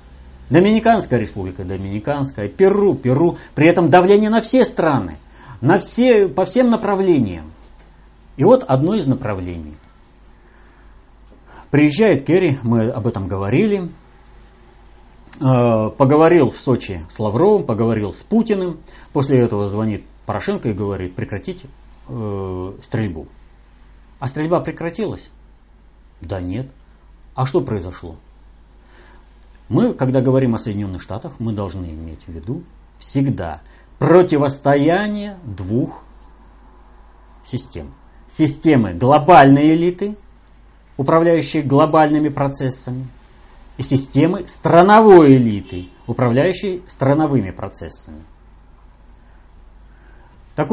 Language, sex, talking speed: Russian, male, 90 wpm